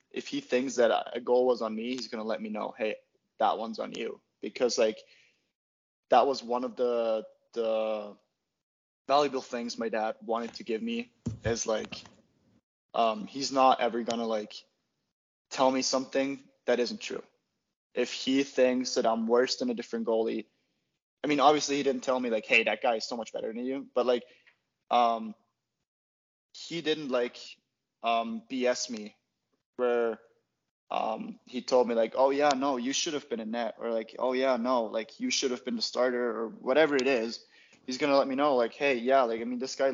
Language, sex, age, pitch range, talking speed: English, male, 20-39, 115-130 Hz, 195 wpm